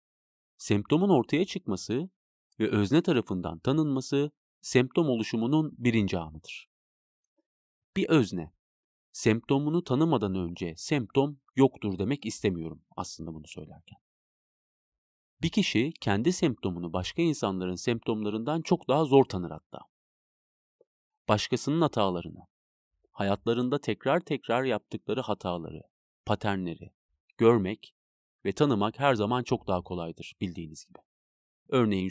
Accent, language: native, Turkish